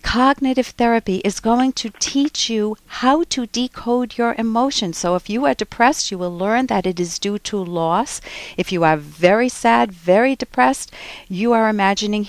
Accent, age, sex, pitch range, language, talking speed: American, 50-69, female, 180-245 Hz, English, 175 wpm